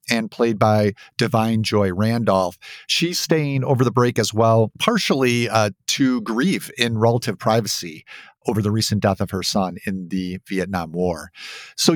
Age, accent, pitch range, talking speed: 40-59, American, 105-135 Hz, 160 wpm